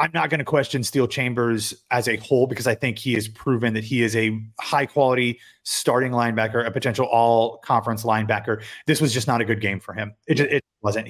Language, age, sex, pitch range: English, 30-49, male, 110-130 Hz